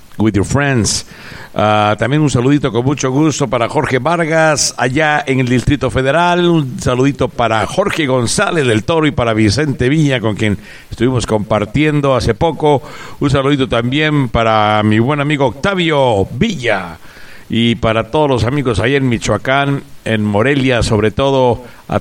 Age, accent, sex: 60-79, Mexican, male